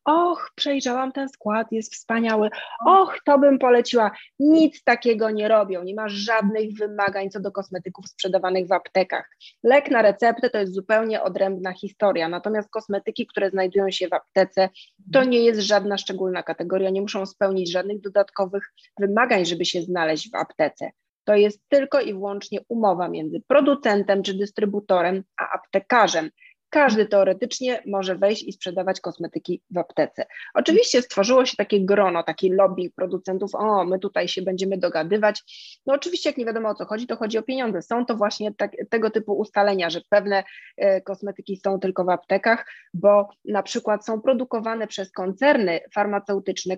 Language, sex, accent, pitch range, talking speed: Polish, female, native, 190-235 Hz, 160 wpm